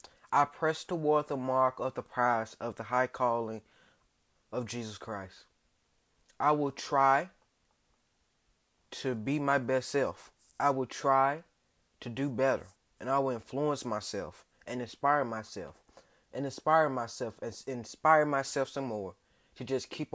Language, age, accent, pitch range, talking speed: English, 20-39, American, 125-150 Hz, 145 wpm